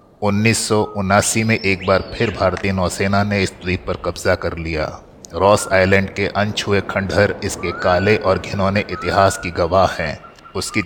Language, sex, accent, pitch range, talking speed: Hindi, male, native, 90-100 Hz, 155 wpm